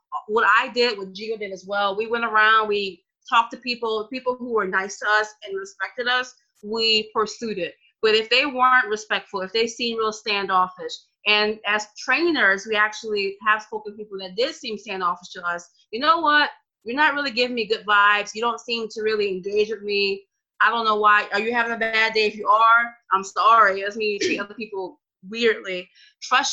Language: English